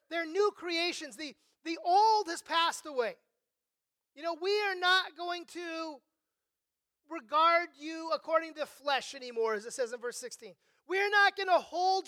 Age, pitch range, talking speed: 30-49, 305-370 Hz, 165 wpm